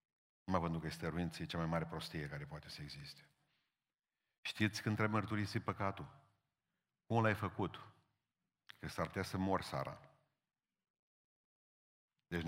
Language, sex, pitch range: Romanian, male, 90-110 Hz